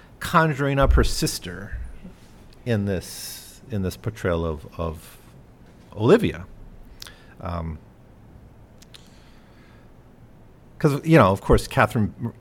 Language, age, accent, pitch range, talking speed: English, 50-69, American, 90-115 Hz, 85 wpm